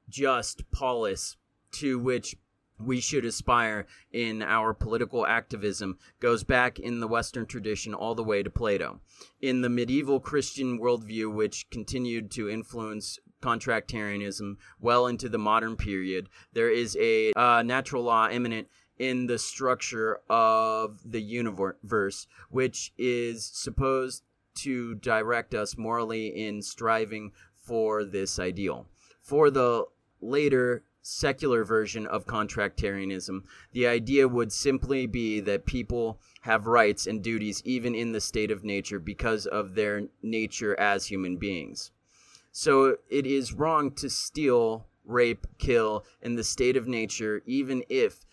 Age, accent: 30-49, American